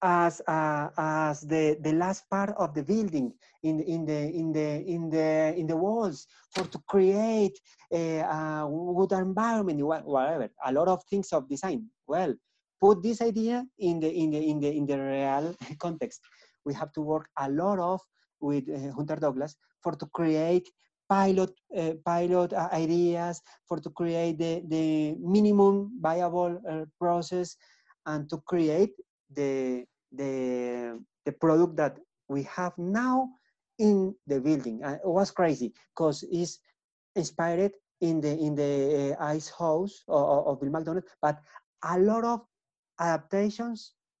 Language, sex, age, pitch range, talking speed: English, male, 30-49, 155-190 Hz, 155 wpm